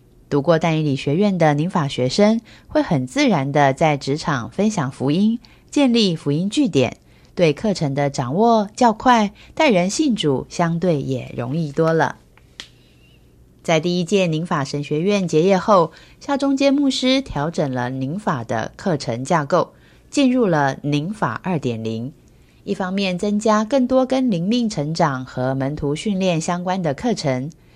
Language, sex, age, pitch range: Chinese, female, 20-39, 140-205 Hz